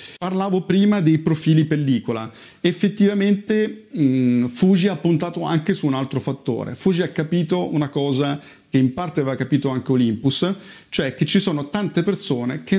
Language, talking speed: Italian, 155 wpm